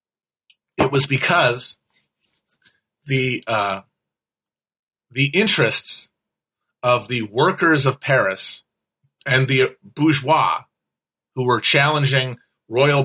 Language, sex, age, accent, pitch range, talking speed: English, male, 40-59, American, 120-150 Hz, 85 wpm